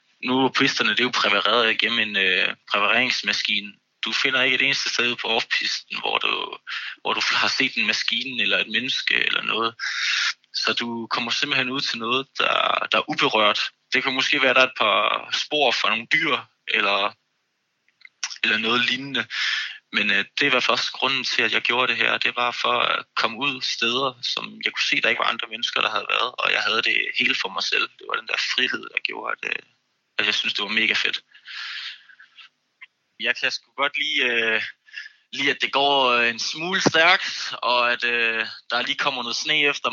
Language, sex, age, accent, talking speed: Danish, male, 20-39, native, 200 wpm